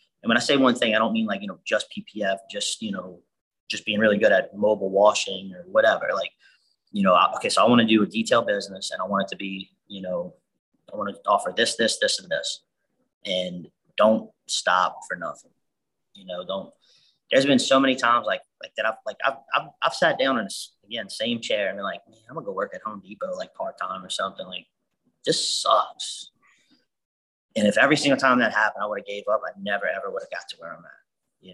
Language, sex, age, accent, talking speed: English, male, 30-49, American, 240 wpm